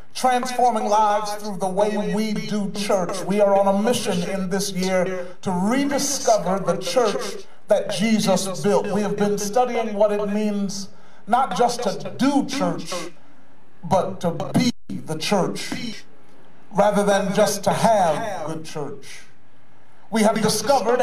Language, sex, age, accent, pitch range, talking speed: English, male, 40-59, American, 200-240 Hz, 145 wpm